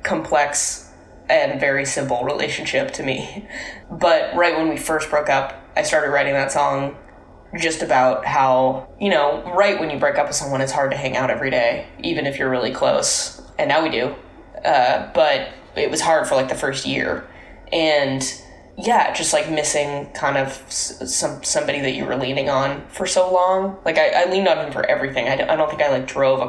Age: 10-29